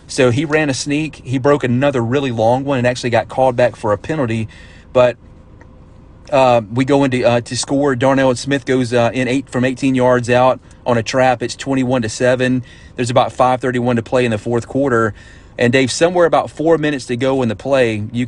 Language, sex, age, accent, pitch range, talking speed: English, male, 30-49, American, 115-130 Hz, 215 wpm